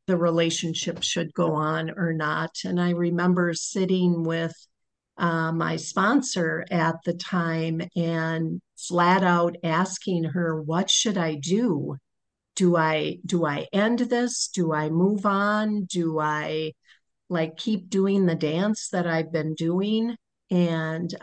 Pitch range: 165-185 Hz